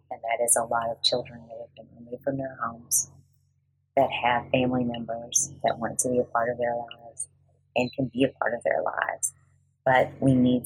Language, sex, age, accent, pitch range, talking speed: English, female, 30-49, American, 125-140 Hz, 215 wpm